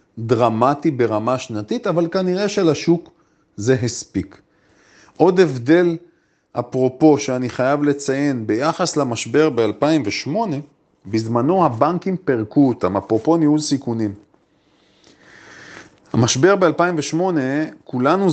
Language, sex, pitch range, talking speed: Hebrew, male, 125-165 Hz, 90 wpm